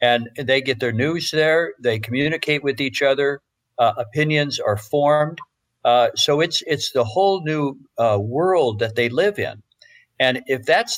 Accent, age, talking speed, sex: American, 60-79, 170 wpm, male